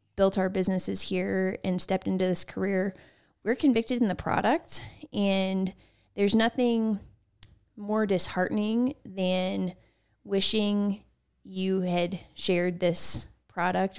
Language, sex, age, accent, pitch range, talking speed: English, female, 20-39, American, 180-210 Hz, 110 wpm